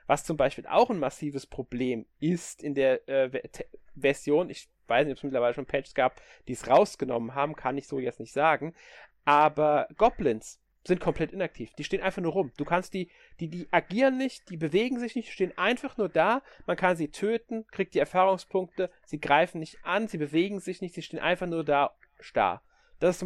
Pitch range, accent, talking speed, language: 145-185 Hz, German, 210 wpm, German